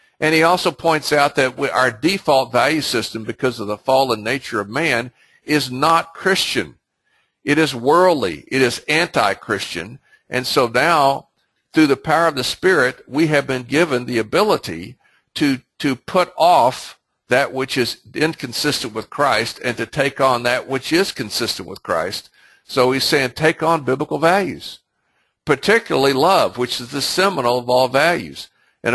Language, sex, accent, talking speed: English, male, American, 160 wpm